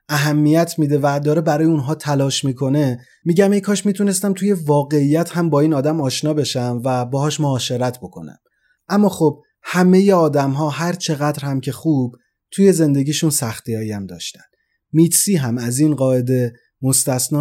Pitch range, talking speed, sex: 130-165 Hz, 160 wpm, male